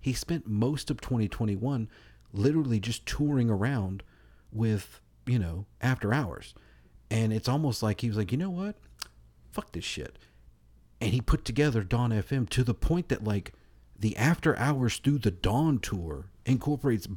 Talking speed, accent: 160 wpm, American